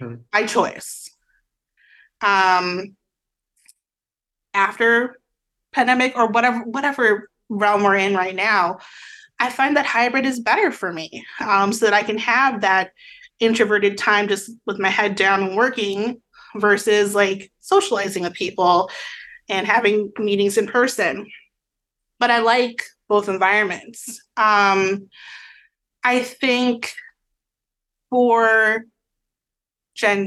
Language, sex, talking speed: English, female, 115 wpm